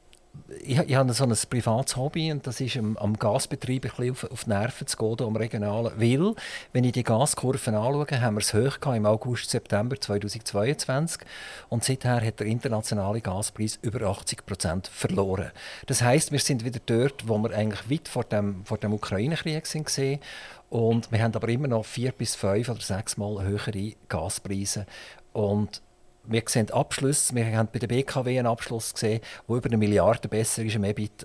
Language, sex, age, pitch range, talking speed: German, male, 50-69, 105-130 Hz, 180 wpm